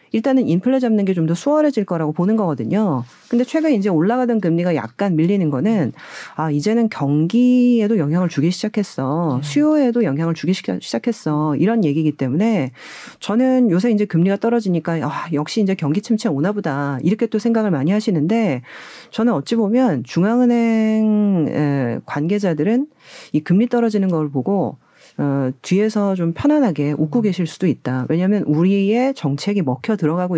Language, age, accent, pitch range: Korean, 40-59, native, 155-235 Hz